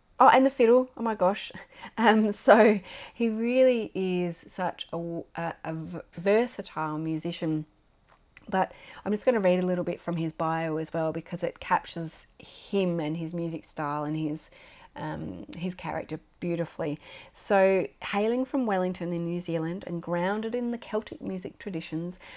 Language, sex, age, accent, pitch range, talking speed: English, female, 30-49, Australian, 160-190 Hz, 160 wpm